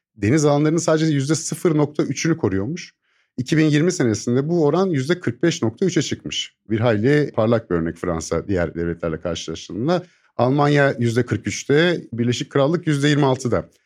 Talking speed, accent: 125 wpm, native